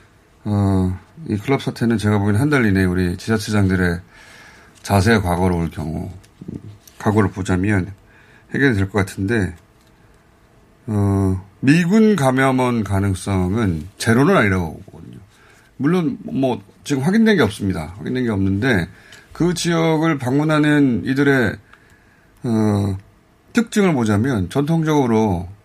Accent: native